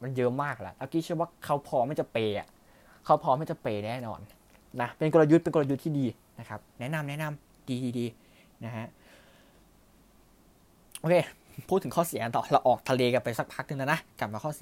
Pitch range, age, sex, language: 110-150 Hz, 20-39, male, Thai